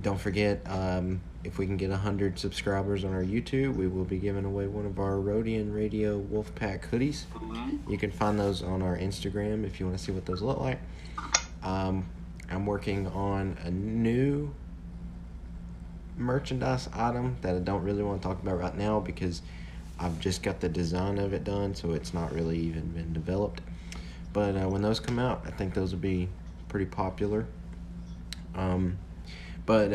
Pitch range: 85-100 Hz